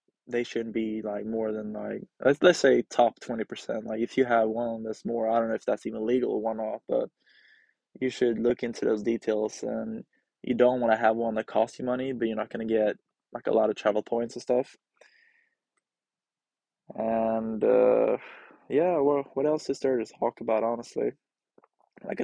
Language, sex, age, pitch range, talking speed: English, male, 20-39, 110-125 Hz, 195 wpm